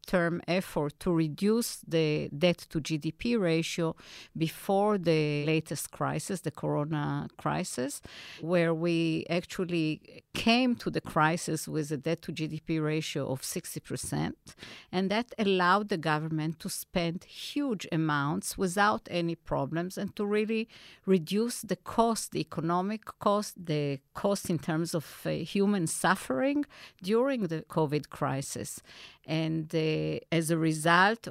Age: 50-69